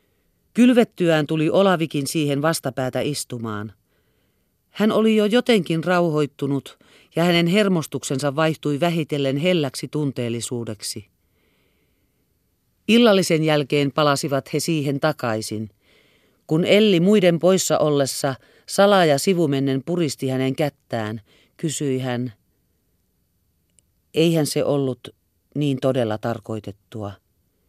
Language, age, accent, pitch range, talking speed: Finnish, 40-59, native, 120-175 Hz, 95 wpm